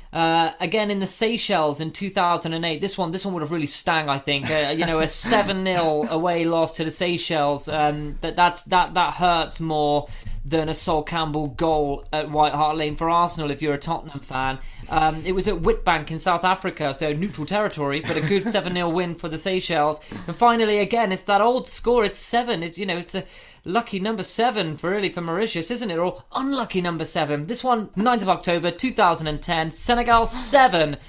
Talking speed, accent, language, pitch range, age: 200 wpm, British, English, 155-200 Hz, 20-39